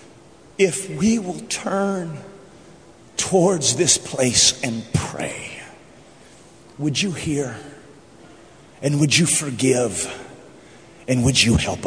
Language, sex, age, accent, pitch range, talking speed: English, male, 40-59, American, 140-195 Hz, 100 wpm